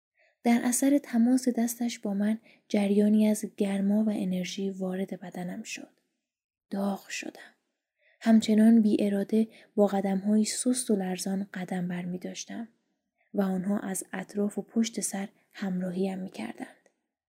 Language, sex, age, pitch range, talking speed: Persian, female, 20-39, 190-230 Hz, 130 wpm